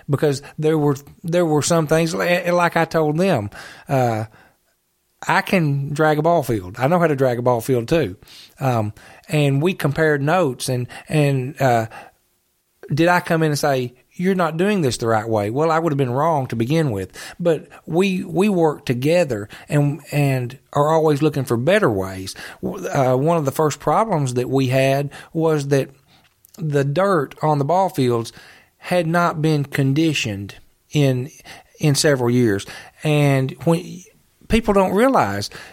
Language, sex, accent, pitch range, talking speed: English, male, American, 135-175 Hz, 170 wpm